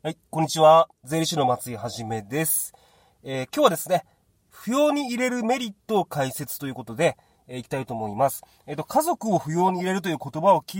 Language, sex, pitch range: Japanese, male, 125-180 Hz